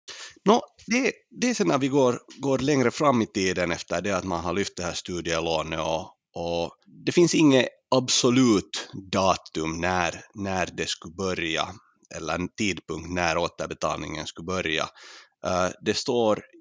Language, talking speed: Swedish, 150 wpm